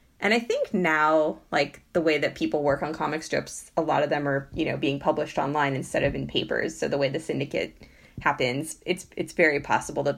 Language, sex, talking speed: English, female, 225 wpm